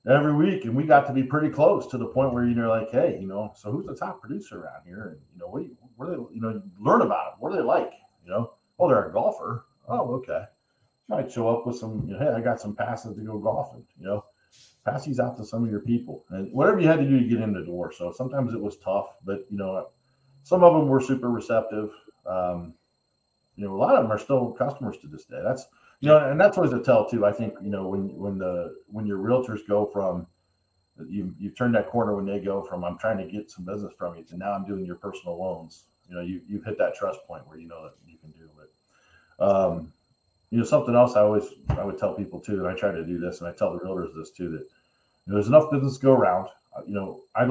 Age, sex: 40-59, male